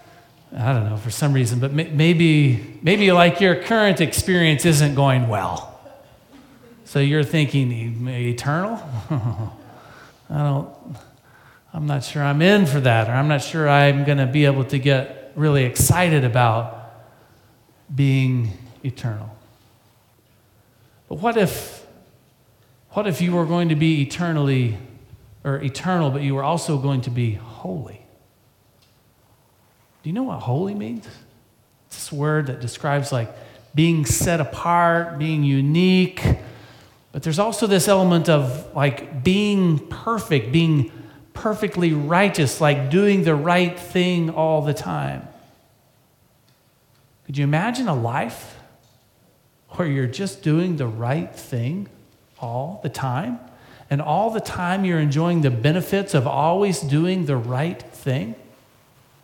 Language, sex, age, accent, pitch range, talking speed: English, male, 40-59, American, 120-165 Hz, 135 wpm